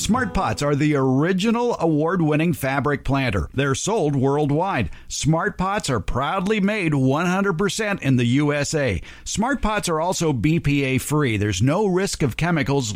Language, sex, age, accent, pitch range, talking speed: English, male, 50-69, American, 130-170 Hz, 145 wpm